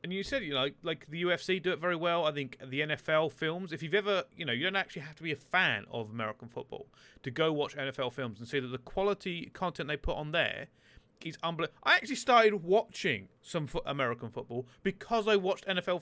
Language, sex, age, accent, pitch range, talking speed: English, male, 30-49, British, 135-185 Hz, 230 wpm